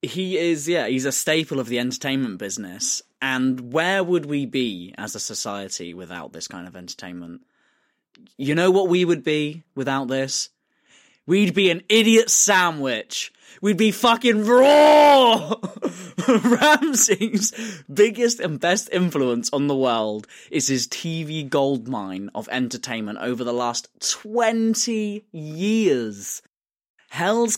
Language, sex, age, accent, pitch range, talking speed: English, male, 10-29, British, 125-190 Hz, 130 wpm